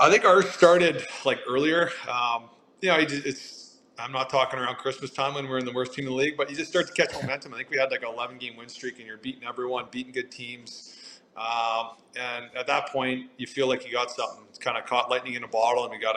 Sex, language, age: male, English, 30-49